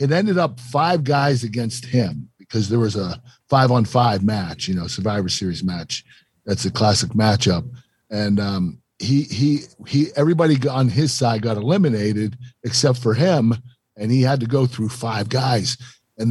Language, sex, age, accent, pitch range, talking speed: English, male, 50-69, American, 115-145 Hz, 175 wpm